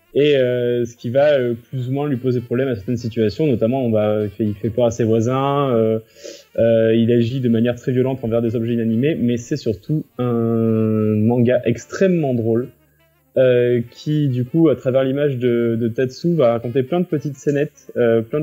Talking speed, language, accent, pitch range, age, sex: 205 wpm, French, French, 115-140 Hz, 20-39, male